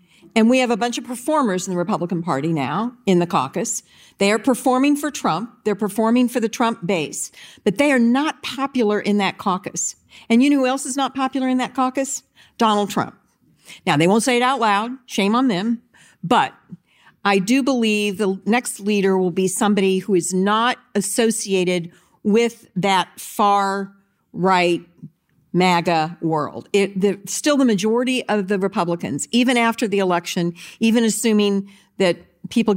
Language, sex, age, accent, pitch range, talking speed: English, female, 50-69, American, 180-240 Hz, 165 wpm